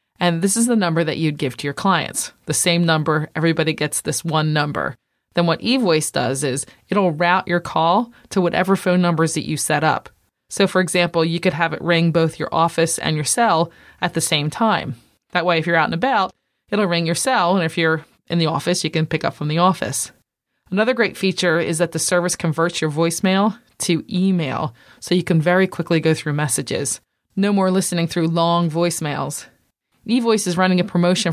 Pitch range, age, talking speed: 155-185 Hz, 20-39, 210 wpm